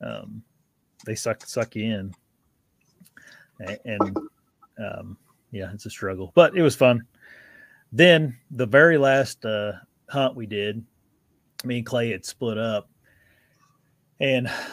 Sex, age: male, 30-49